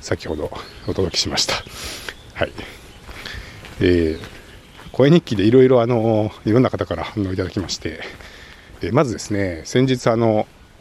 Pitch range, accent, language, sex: 95-125 Hz, native, Japanese, male